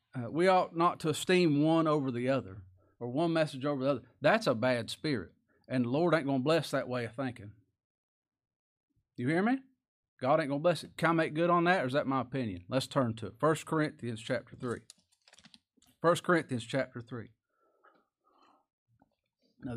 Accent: American